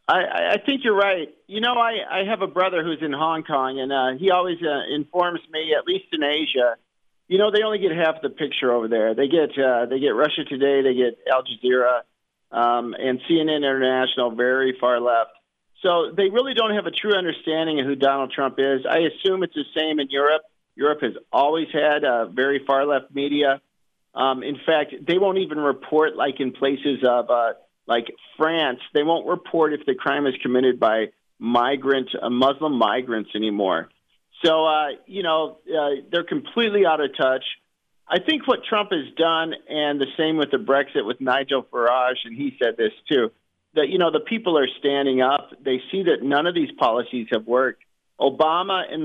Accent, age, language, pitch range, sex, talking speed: American, 40-59, English, 130-175 Hz, male, 195 wpm